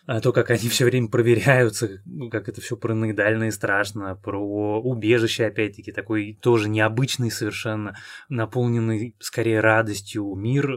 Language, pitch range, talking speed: Russian, 110-145 Hz, 140 wpm